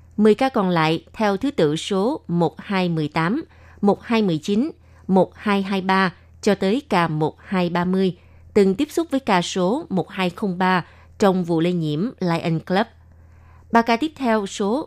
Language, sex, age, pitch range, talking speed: Vietnamese, female, 20-39, 165-210 Hz, 135 wpm